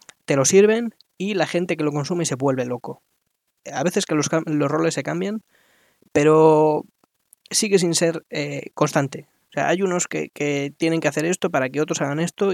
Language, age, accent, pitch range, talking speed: Spanish, 20-39, Spanish, 140-165 Hz, 195 wpm